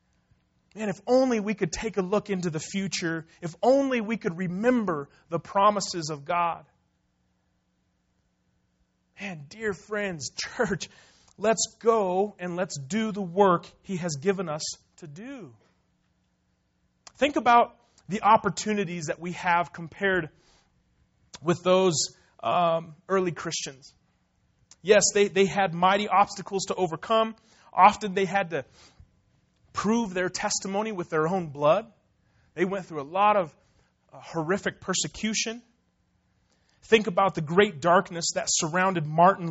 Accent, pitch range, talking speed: American, 160-205 Hz, 130 wpm